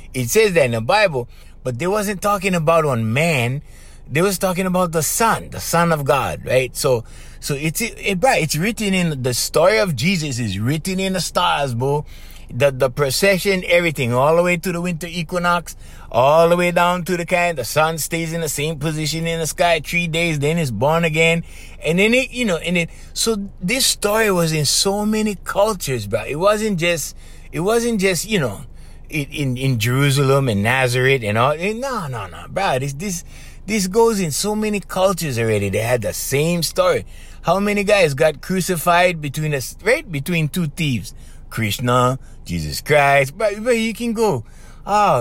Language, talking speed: English, 195 wpm